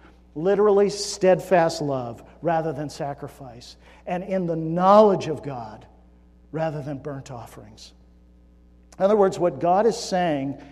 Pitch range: 145-220 Hz